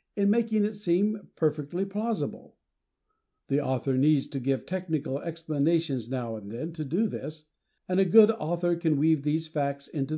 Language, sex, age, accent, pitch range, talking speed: English, male, 60-79, American, 135-175 Hz, 165 wpm